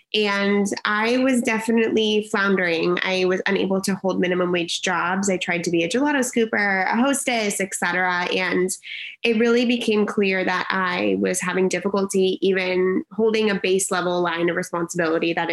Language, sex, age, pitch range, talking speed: English, female, 20-39, 180-210 Hz, 165 wpm